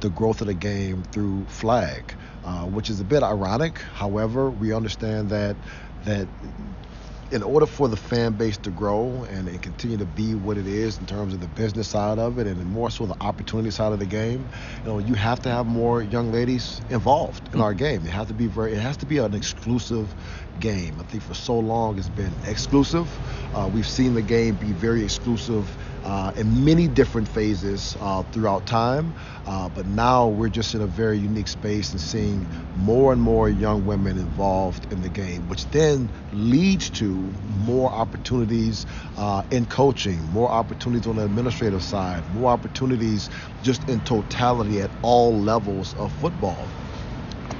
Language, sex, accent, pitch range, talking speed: English, male, American, 100-120 Hz, 185 wpm